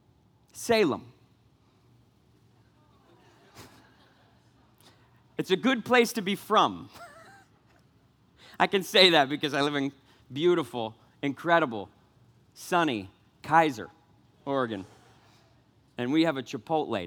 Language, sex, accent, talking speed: English, male, American, 90 wpm